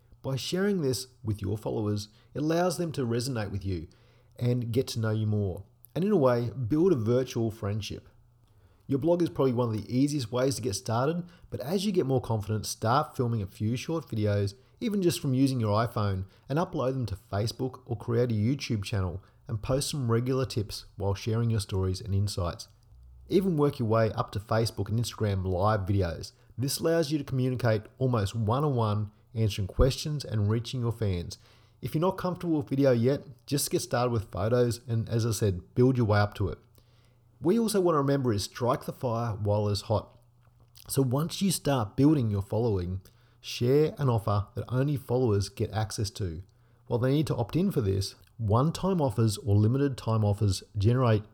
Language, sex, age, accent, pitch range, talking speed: English, male, 30-49, Australian, 105-130 Hz, 195 wpm